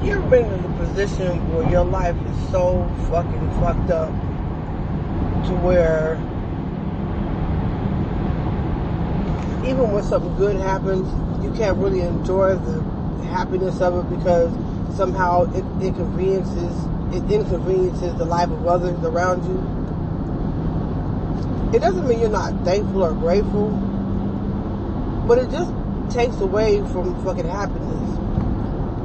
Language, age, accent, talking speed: English, 20-39, American, 120 wpm